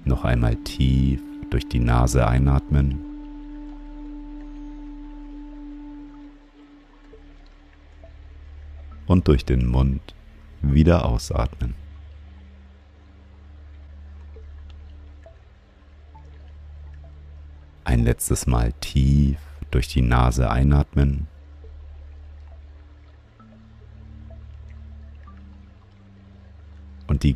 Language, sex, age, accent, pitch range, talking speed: German, male, 50-69, German, 70-80 Hz, 50 wpm